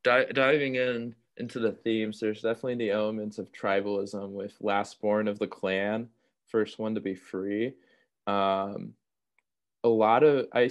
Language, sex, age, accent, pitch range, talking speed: English, male, 20-39, American, 100-115 Hz, 150 wpm